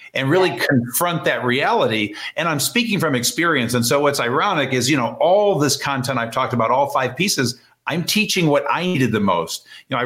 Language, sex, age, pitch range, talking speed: English, male, 50-69, 130-170 Hz, 215 wpm